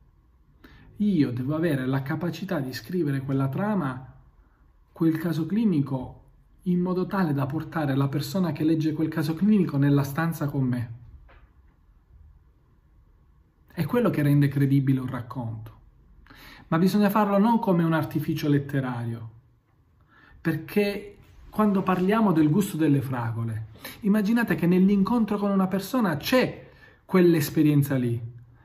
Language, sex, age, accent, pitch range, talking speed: Italian, male, 40-59, native, 130-175 Hz, 125 wpm